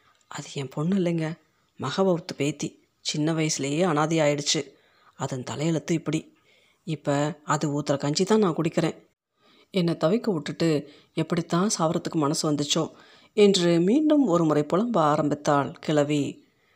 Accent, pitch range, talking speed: native, 150-195 Hz, 120 wpm